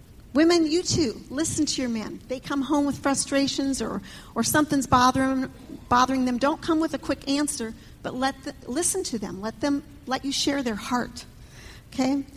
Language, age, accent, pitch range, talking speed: English, 40-59, American, 225-275 Hz, 185 wpm